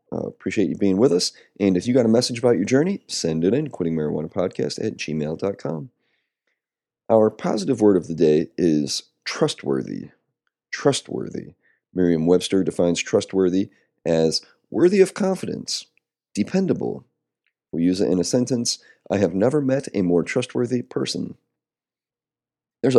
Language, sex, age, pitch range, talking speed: English, male, 30-49, 85-120 Hz, 140 wpm